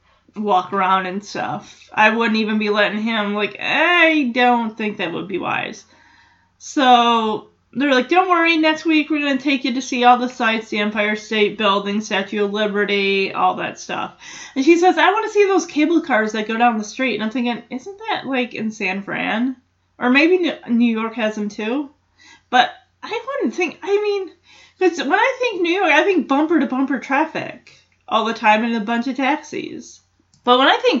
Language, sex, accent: English, female, American